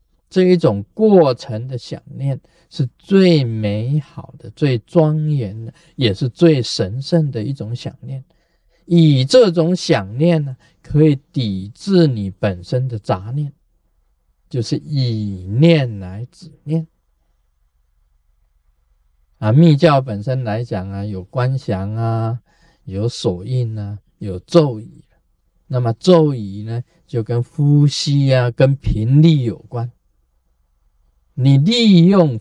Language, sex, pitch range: Chinese, male, 110-165 Hz